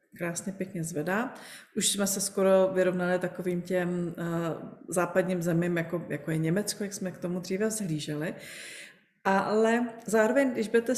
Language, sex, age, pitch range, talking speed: Czech, female, 30-49, 175-210 Hz, 140 wpm